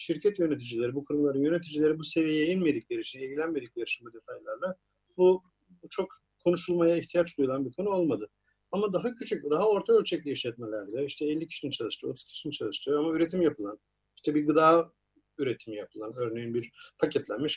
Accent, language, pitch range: native, Turkish, 140-180 Hz